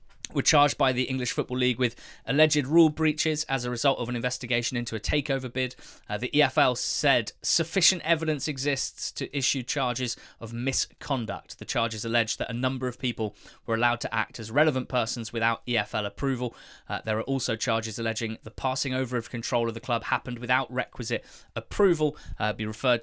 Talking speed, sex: 190 wpm, male